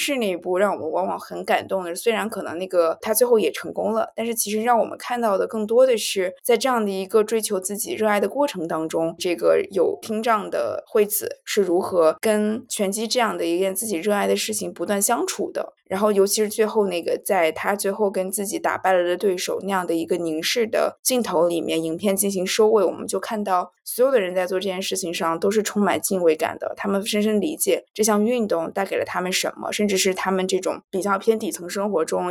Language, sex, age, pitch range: Chinese, female, 20-39, 185-225 Hz